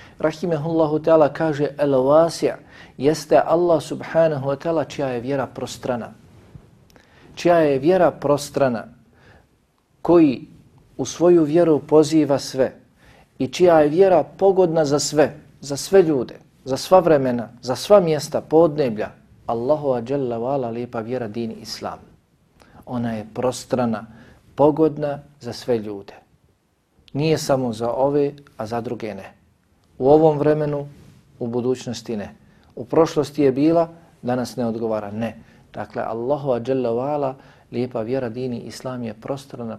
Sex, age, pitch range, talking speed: male, 50-69, 120-150 Hz, 125 wpm